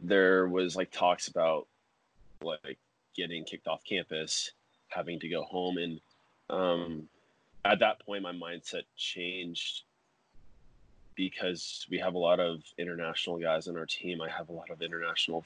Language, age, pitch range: English, 20-39, 80-95 Hz